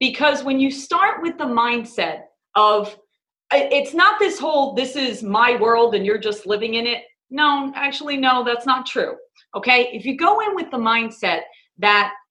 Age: 40-59